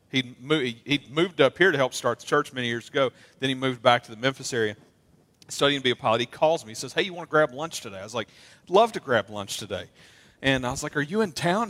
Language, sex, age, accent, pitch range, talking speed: English, male, 40-59, American, 130-175 Hz, 280 wpm